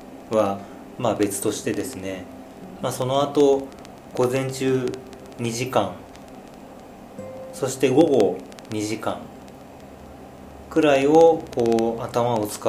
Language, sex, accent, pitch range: Japanese, male, native, 100-140 Hz